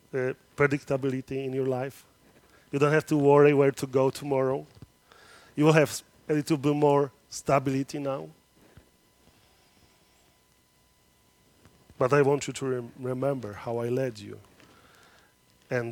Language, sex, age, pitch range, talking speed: English, male, 30-49, 125-150 Hz, 130 wpm